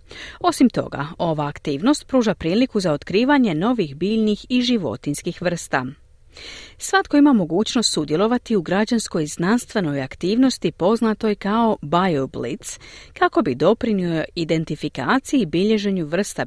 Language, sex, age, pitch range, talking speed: Croatian, female, 40-59, 160-245 Hz, 115 wpm